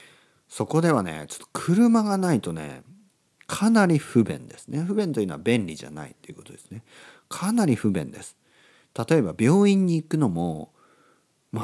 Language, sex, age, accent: Japanese, male, 40-59, native